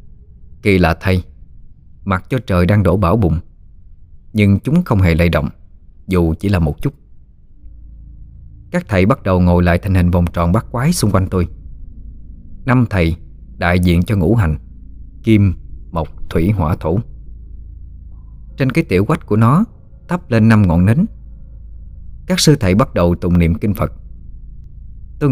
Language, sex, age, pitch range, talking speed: Vietnamese, male, 20-39, 80-105 Hz, 165 wpm